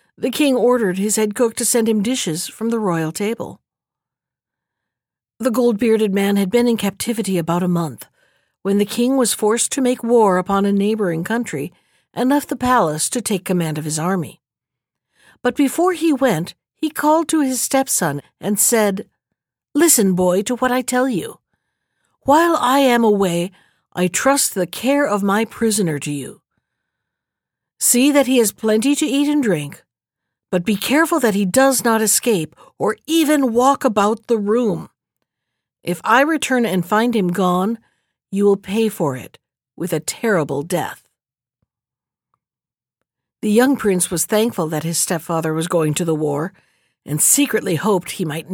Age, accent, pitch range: 60-79, American, 180-250 Hz